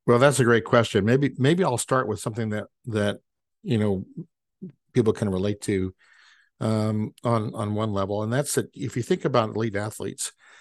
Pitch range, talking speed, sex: 105-125 Hz, 185 wpm, male